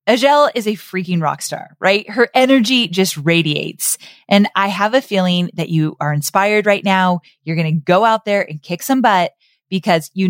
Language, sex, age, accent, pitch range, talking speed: English, female, 20-39, American, 175-230 Hz, 200 wpm